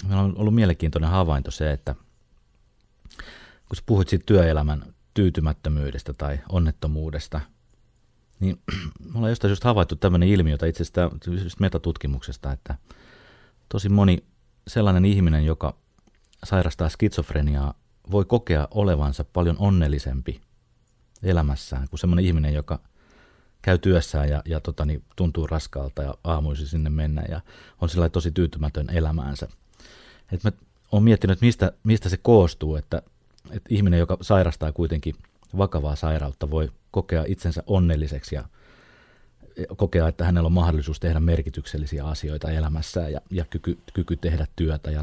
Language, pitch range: Finnish, 75-95 Hz